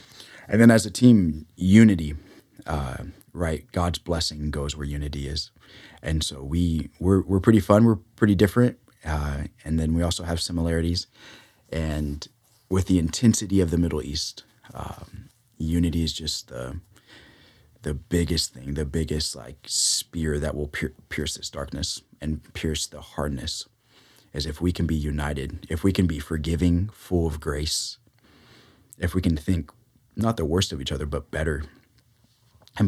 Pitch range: 75-95 Hz